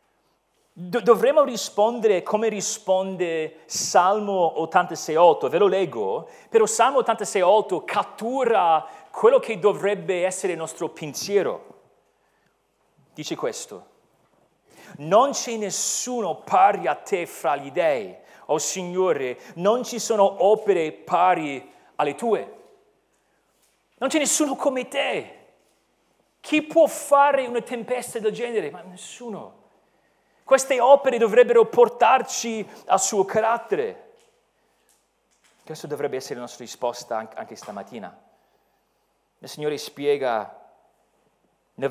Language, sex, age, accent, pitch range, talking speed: Italian, male, 40-59, native, 165-280 Hz, 105 wpm